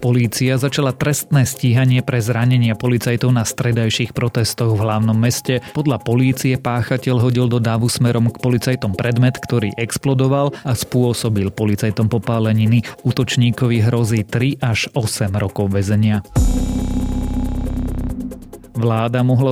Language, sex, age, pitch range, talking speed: Slovak, male, 30-49, 110-130 Hz, 115 wpm